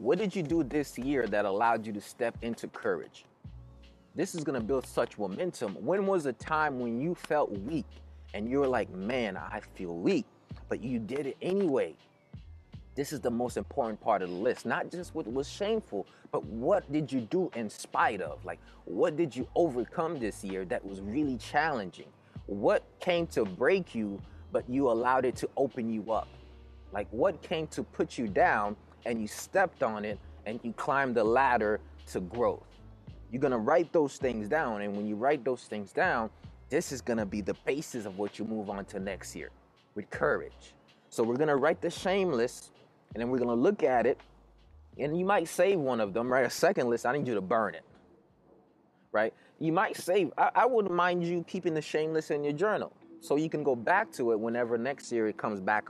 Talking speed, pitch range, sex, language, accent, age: 215 wpm, 105-155 Hz, male, English, American, 30-49